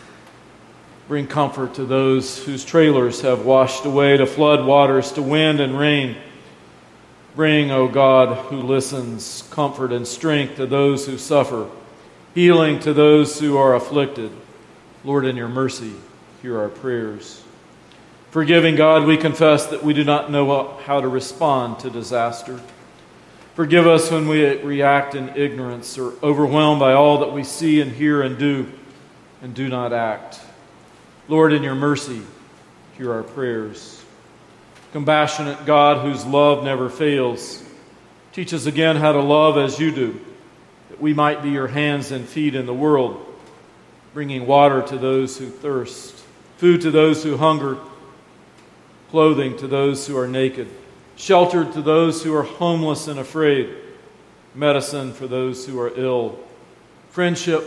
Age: 40-59